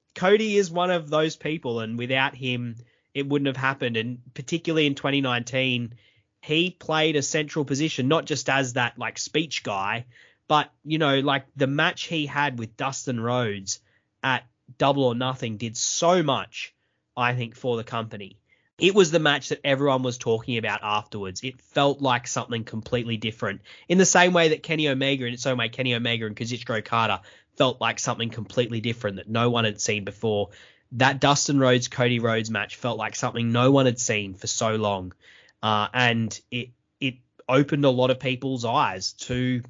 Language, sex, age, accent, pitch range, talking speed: English, male, 20-39, Australian, 115-145 Hz, 185 wpm